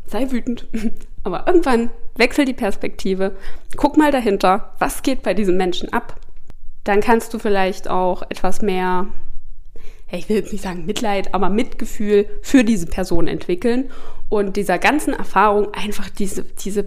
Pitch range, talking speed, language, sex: 200-250 Hz, 145 wpm, German, female